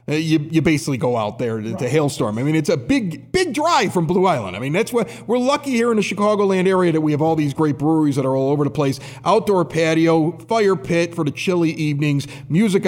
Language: English